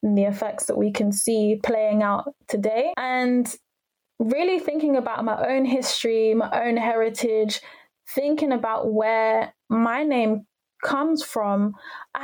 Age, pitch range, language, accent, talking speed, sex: 10-29, 225-280 Hz, English, British, 135 wpm, female